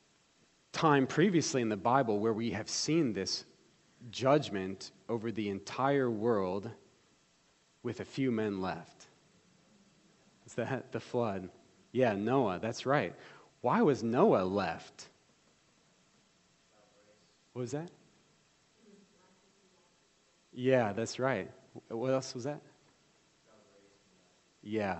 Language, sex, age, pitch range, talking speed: English, male, 30-49, 115-150 Hz, 105 wpm